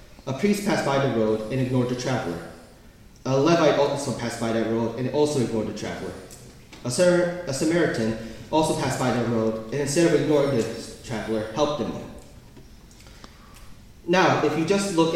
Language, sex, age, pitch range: Korean, male, 30-49, 120-155 Hz